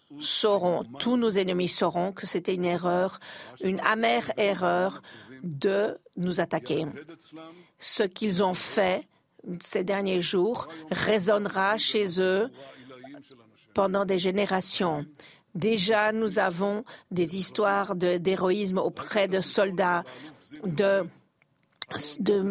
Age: 50-69